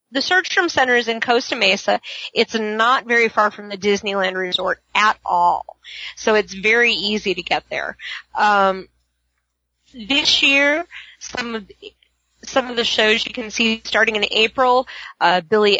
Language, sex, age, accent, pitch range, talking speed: English, female, 30-49, American, 195-245 Hz, 155 wpm